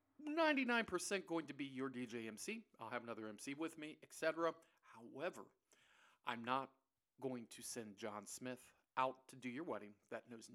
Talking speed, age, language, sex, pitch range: 160 wpm, 50-69, English, male, 115-150 Hz